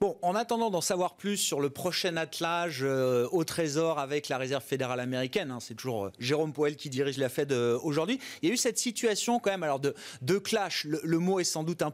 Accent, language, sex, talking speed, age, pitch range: French, French, male, 245 wpm, 30-49, 155-210 Hz